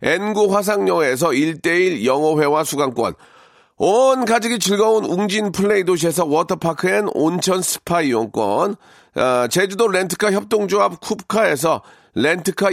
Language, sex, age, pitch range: Korean, male, 40-59, 170-220 Hz